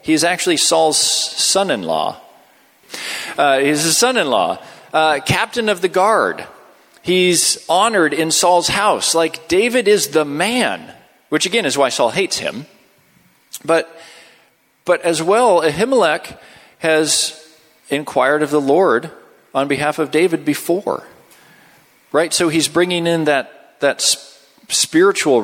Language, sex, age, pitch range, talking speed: English, male, 40-59, 150-210 Hz, 125 wpm